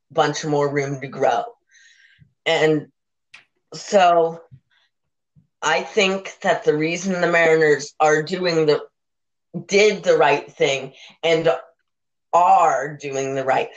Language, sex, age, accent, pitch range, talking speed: English, female, 30-49, American, 155-185 Hz, 115 wpm